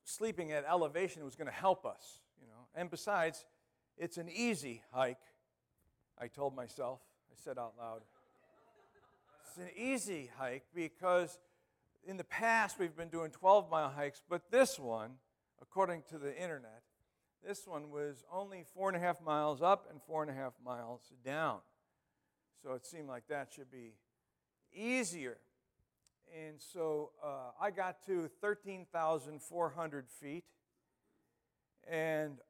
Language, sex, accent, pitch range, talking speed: English, male, American, 130-180 Hz, 140 wpm